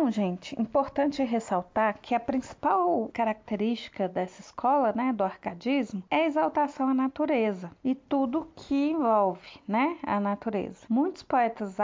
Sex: female